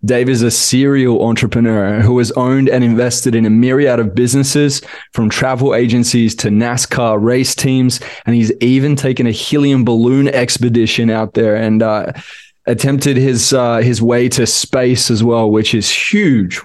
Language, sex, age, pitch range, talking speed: English, male, 20-39, 115-130 Hz, 165 wpm